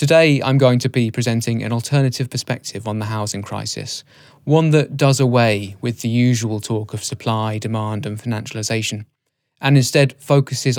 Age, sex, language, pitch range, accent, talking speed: 20-39, male, English, 115-140 Hz, British, 160 wpm